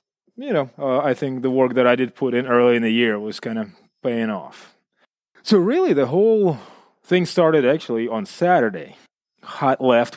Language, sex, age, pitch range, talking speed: English, male, 20-39, 120-140 Hz, 190 wpm